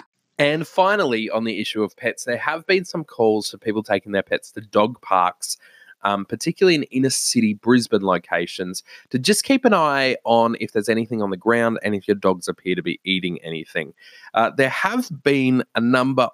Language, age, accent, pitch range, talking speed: English, 20-39, Australian, 95-130 Hz, 195 wpm